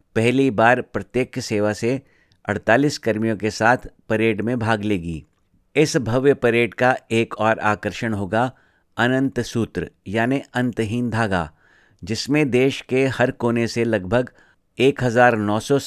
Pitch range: 105-125 Hz